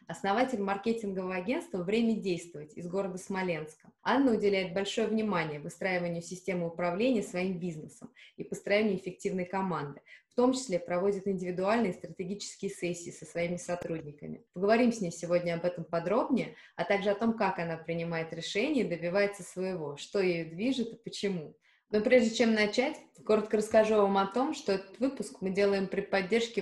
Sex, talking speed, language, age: female, 160 wpm, Russian, 20-39